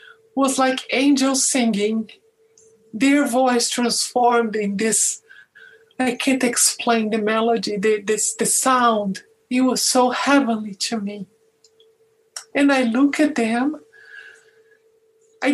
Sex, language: male, English